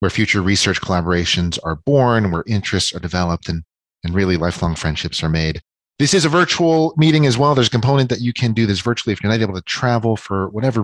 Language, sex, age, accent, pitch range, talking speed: English, male, 40-59, American, 95-120 Hz, 225 wpm